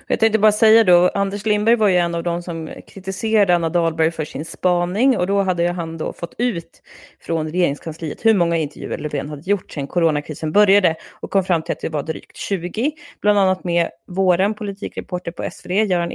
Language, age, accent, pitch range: Swedish, 30-49, native, 170-210 Hz